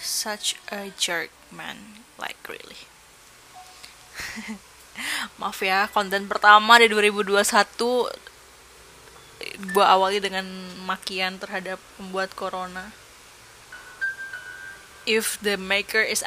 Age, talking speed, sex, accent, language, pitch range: 10-29, 85 wpm, female, native, Indonesian, 185-215 Hz